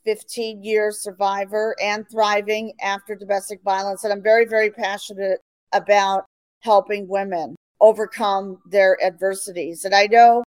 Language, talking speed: English, 125 wpm